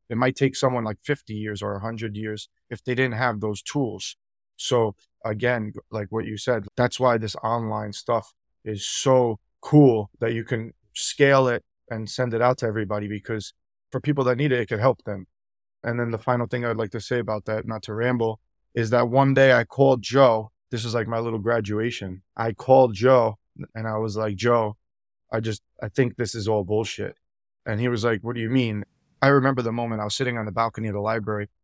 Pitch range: 110-125 Hz